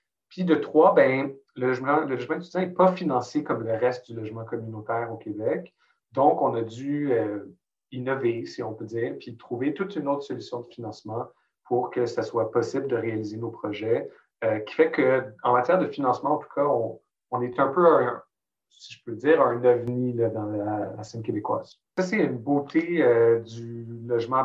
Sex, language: male, French